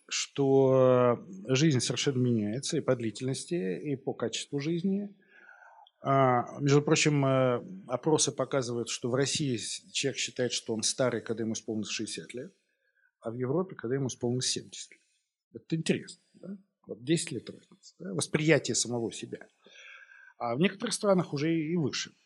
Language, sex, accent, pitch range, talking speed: Russian, male, native, 125-165 Hz, 140 wpm